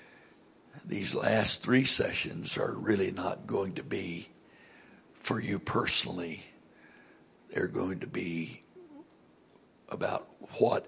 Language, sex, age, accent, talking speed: English, male, 60-79, American, 105 wpm